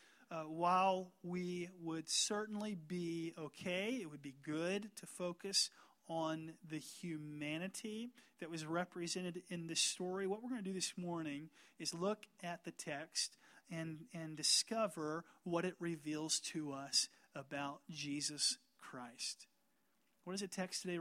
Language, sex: English, male